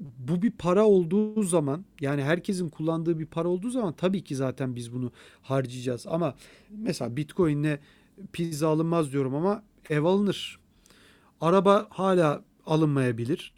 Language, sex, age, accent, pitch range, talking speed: Turkish, male, 40-59, native, 140-190 Hz, 135 wpm